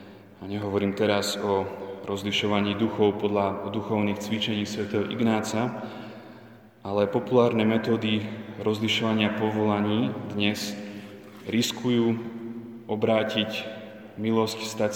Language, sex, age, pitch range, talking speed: Slovak, male, 20-39, 100-110 Hz, 85 wpm